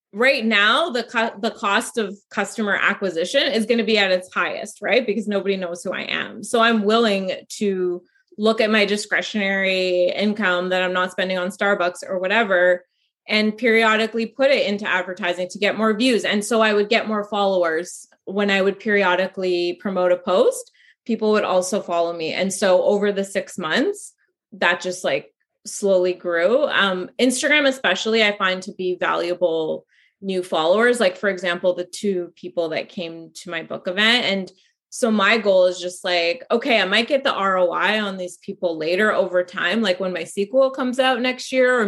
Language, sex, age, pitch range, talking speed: English, female, 20-39, 180-225 Hz, 185 wpm